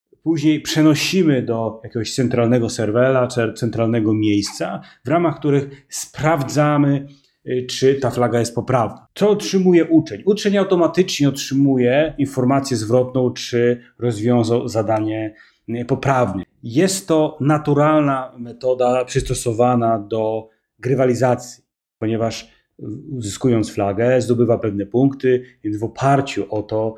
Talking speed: 105 wpm